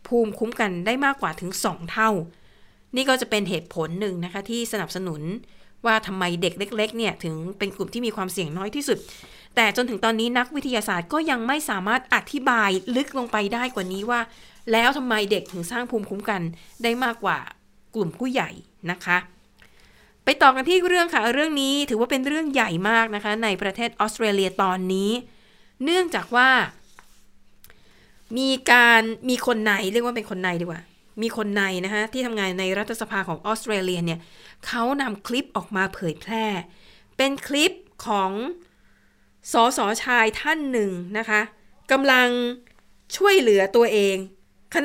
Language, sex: Thai, female